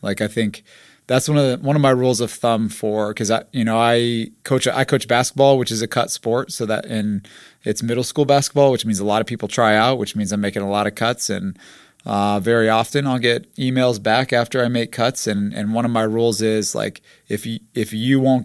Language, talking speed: English, 245 wpm